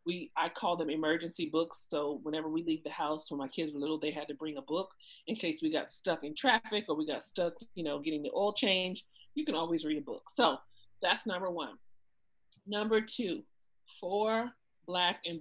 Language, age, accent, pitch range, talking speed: English, 40-59, American, 150-190 Hz, 215 wpm